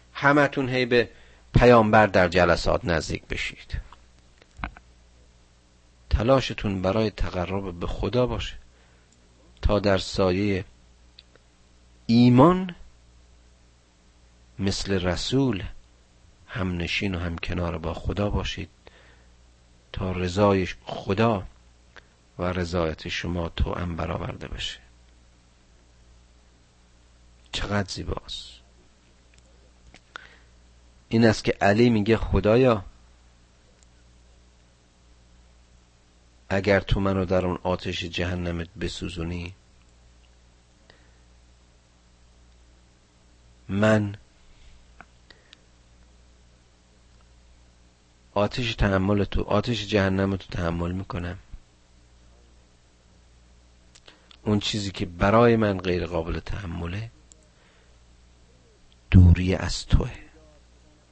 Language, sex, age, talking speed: Persian, male, 50-69, 70 wpm